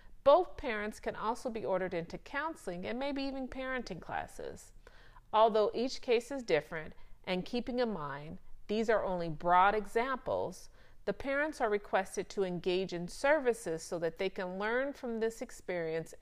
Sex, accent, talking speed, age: female, American, 160 wpm, 40-59